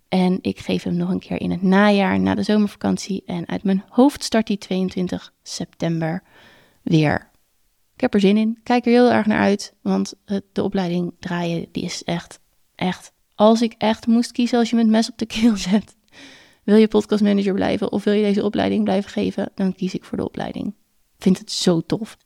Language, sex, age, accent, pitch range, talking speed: Dutch, female, 20-39, Dutch, 190-220 Hz, 205 wpm